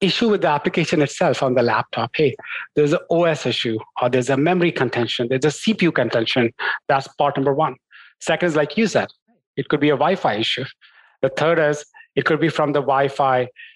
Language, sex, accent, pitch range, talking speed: English, male, Indian, 135-185 Hz, 200 wpm